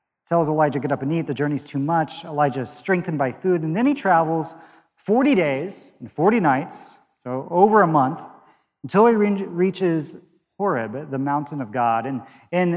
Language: English